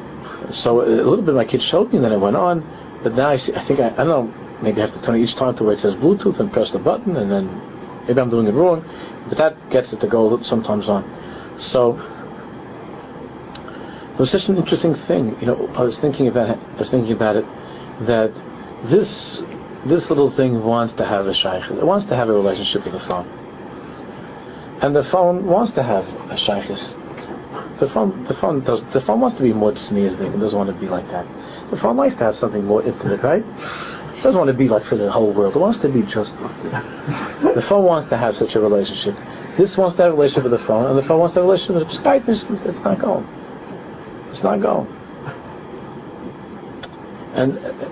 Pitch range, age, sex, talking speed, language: 110-170 Hz, 50-69, male, 230 wpm, English